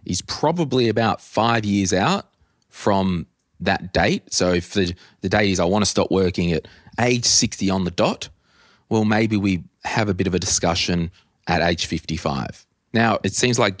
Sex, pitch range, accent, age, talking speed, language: male, 90-105 Hz, Australian, 20-39, 185 wpm, English